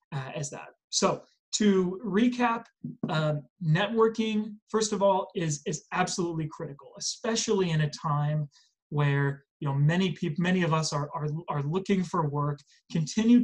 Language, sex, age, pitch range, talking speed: English, male, 30-49, 145-195 Hz, 145 wpm